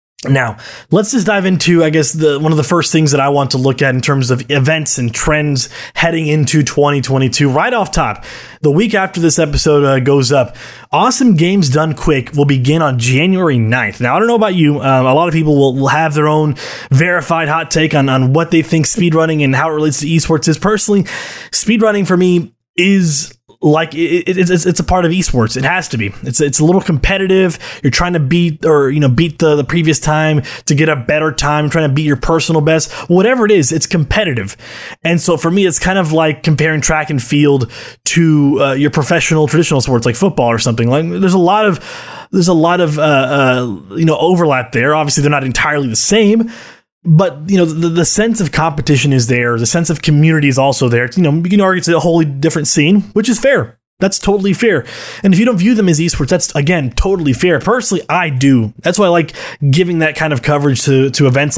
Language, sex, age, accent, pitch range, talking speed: English, male, 20-39, American, 140-175 Hz, 230 wpm